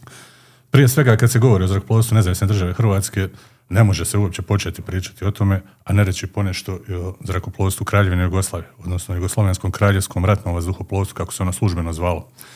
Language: Croatian